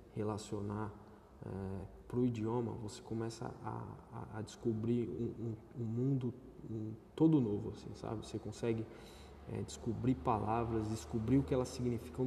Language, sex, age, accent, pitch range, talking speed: English, male, 20-39, Brazilian, 110-140 Hz, 120 wpm